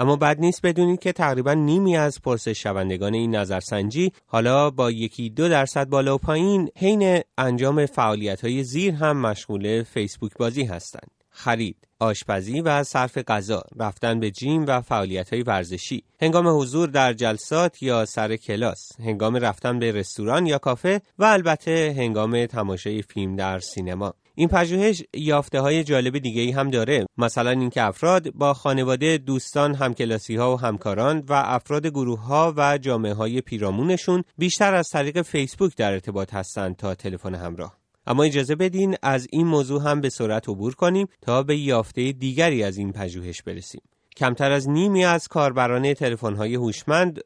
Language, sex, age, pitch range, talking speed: Persian, male, 30-49, 110-150 Hz, 155 wpm